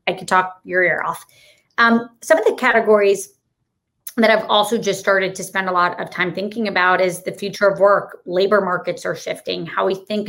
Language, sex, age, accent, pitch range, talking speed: English, female, 30-49, American, 180-205 Hz, 210 wpm